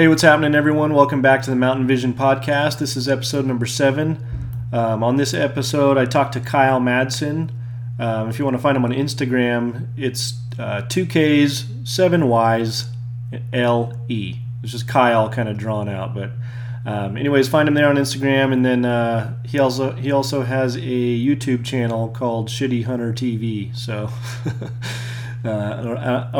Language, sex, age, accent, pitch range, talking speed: English, male, 30-49, American, 120-130 Hz, 170 wpm